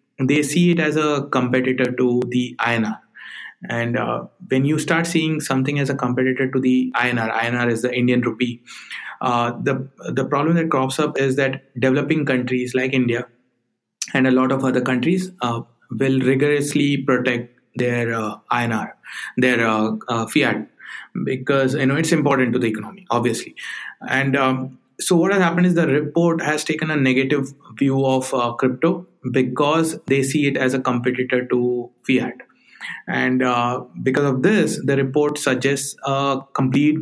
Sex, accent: male, Indian